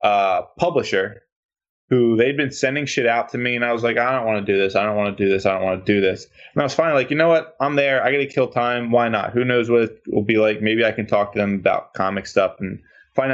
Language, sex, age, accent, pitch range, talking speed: English, male, 20-39, American, 100-125 Hz, 300 wpm